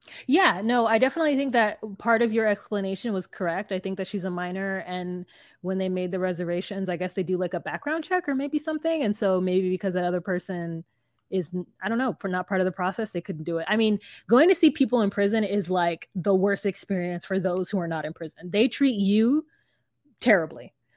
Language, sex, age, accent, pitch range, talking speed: English, female, 20-39, American, 180-240 Hz, 230 wpm